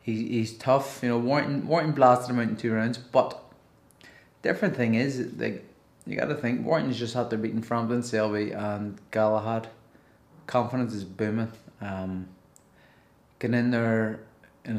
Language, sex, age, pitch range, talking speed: English, male, 20-39, 105-120 Hz, 160 wpm